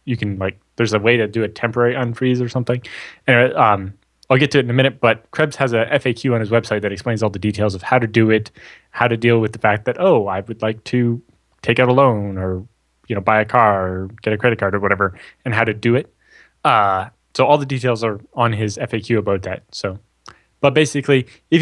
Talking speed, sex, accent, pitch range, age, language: 245 wpm, male, American, 110-135 Hz, 10-29, English